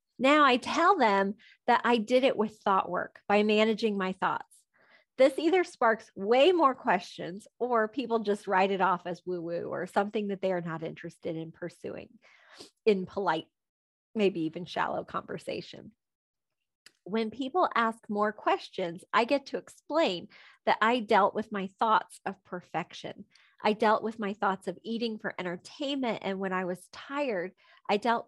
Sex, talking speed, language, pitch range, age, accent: female, 165 wpm, English, 195-250 Hz, 30-49, American